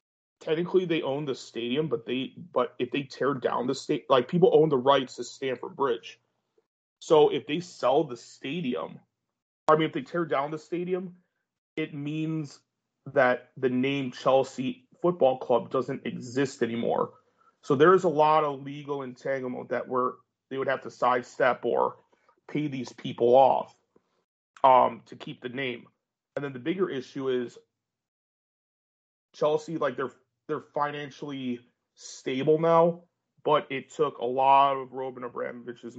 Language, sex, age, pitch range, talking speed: English, male, 30-49, 125-155 Hz, 155 wpm